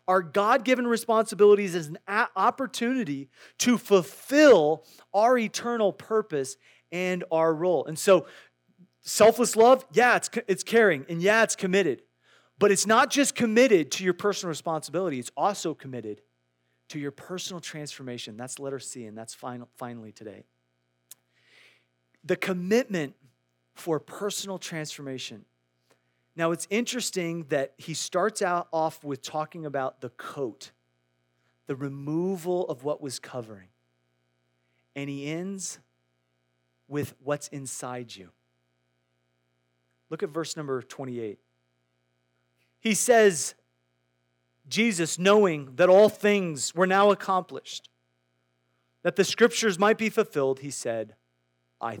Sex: male